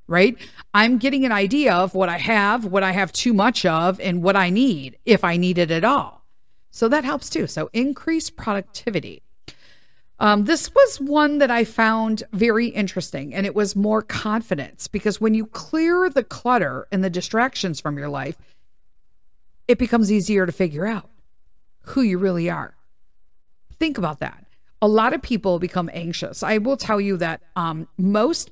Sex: female